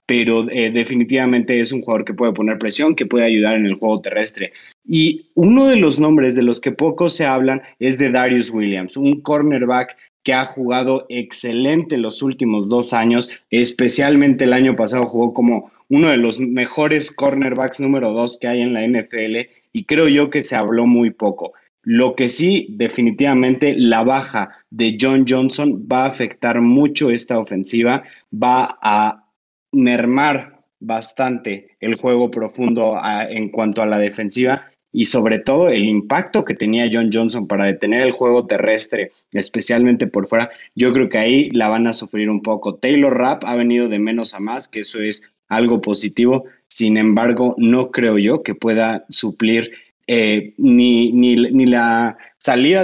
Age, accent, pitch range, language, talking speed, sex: 30-49, Mexican, 110-130 Hz, Spanish, 170 wpm, male